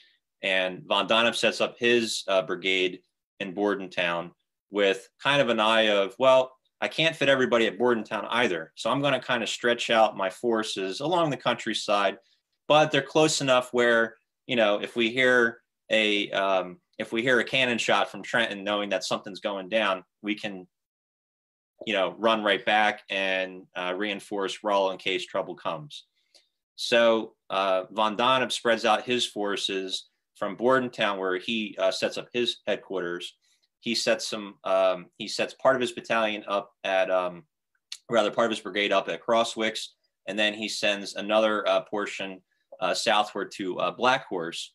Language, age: English, 30-49